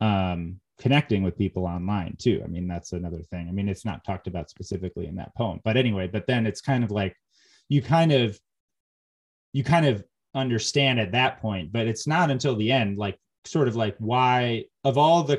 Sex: male